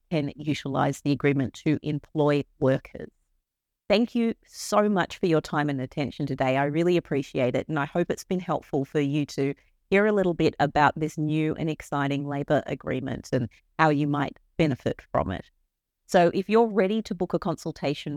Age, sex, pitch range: 40-59, female, 145-185 Hz